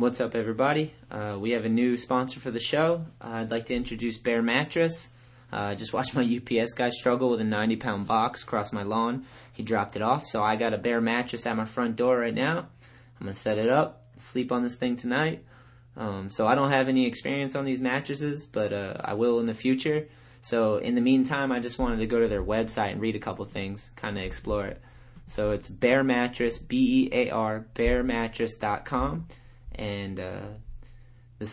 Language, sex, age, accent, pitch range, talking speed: English, male, 20-39, American, 110-125 Hz, 205 wpm